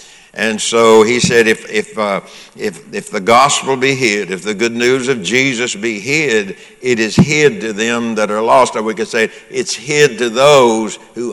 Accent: American